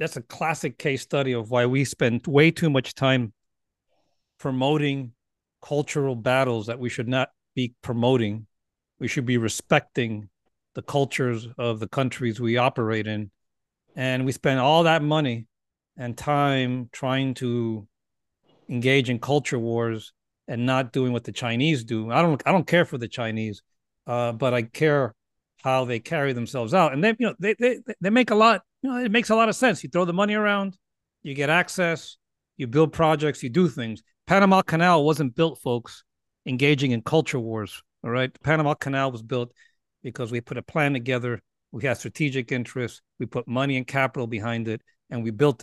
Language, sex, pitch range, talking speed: English, male, 120-145 Hz, 185 wpm